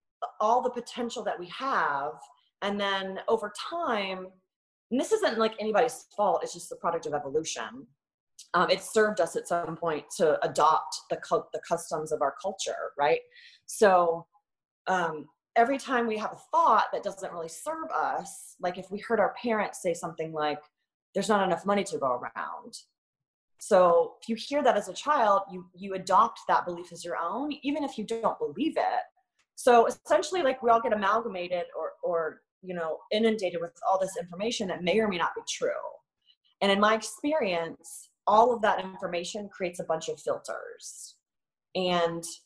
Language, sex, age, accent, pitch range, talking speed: English, female, 30-49, American, 175-235 Hz, 180 wpm